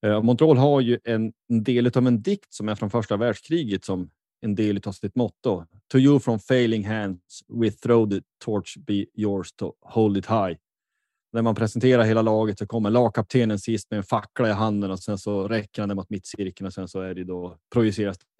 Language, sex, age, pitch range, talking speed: Swedish, male, 20-39, 100-140 Hz, 200 wpm